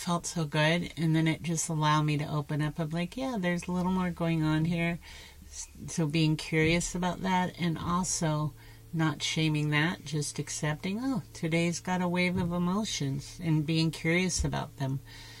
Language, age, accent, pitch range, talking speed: English, 50-69, American, 150-170 Hz, 180 wpm